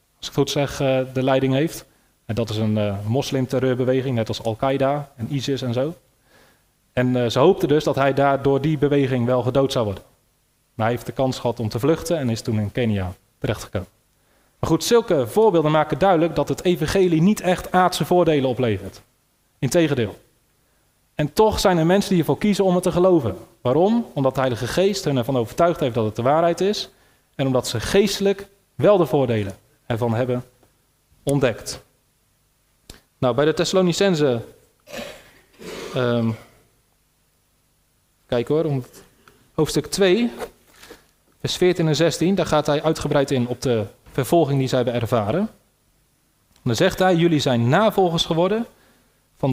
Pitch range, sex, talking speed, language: 125-170 Hz, male, 165 wpm, Dutch